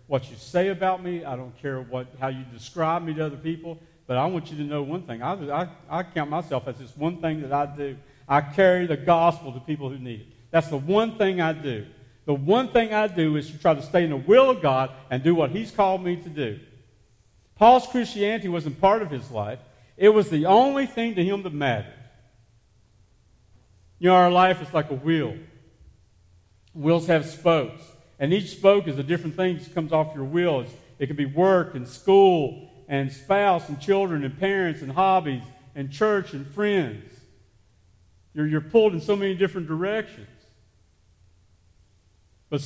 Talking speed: 195 wpm